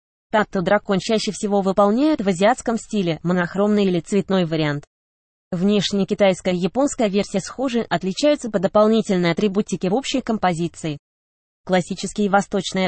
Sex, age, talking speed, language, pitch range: female, 20-39, 120 wpm, Russian, 175-215 Hz